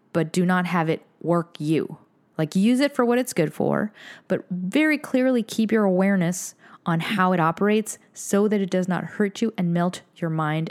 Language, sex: English, female